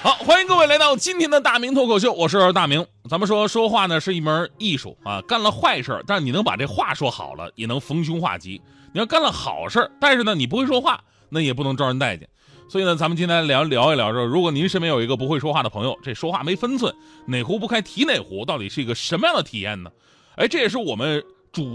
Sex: male